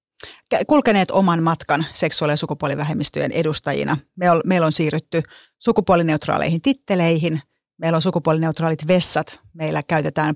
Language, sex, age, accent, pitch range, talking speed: Finnish, female, 30-49, native, 155-185 Hz, 105 wpm